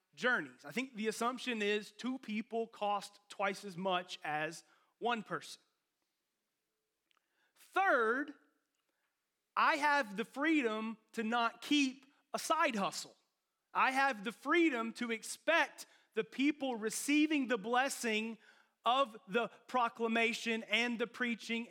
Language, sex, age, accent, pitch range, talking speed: English, male, 30-49, American, 210-270 Hz, 120 wpm